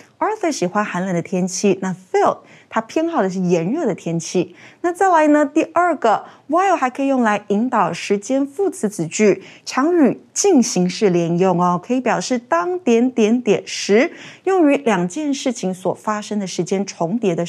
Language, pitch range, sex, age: Chinese, 195-305 Hz, female, 30-49